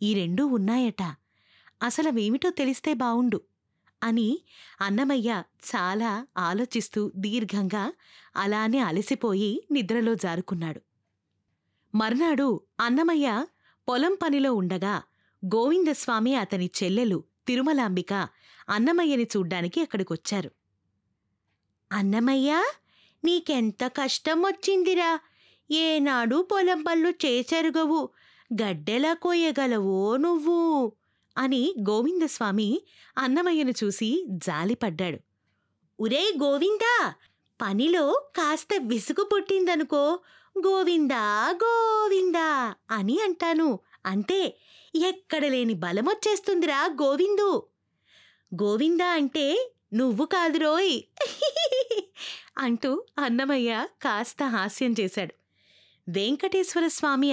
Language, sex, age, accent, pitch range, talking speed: Telugu, female, 20-39, native, 205-330 Hz, 70 wpm